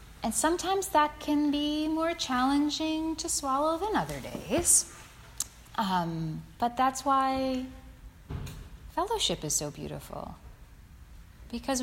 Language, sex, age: English, female, 30-49